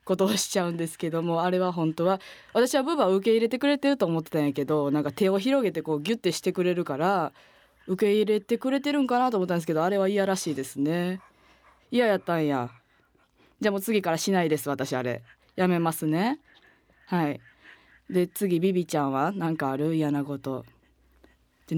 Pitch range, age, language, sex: 155-215 Hz, 20-39, Japanese, female